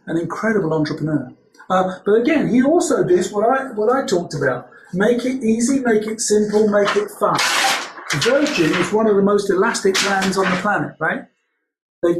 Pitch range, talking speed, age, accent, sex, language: 155-205 Hz, 180 wpm, 40-59, British, male, English